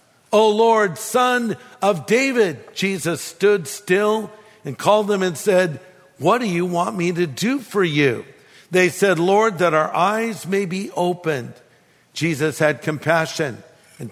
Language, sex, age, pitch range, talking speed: English, male, 50-69, 165-210 Hz, 150 wpm